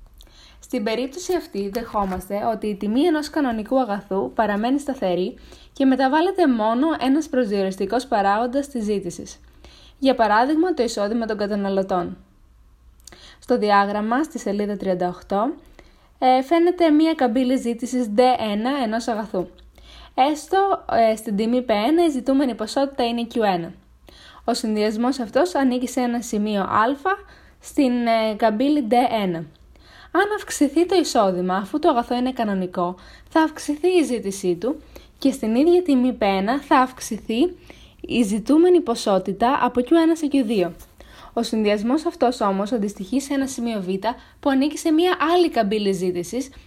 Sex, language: female, Greek